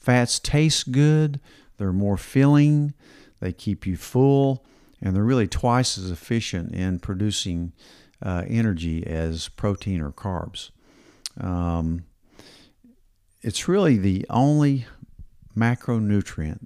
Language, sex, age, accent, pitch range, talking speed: English, male, 50-69, American, 90-120 Hz, 110 wpm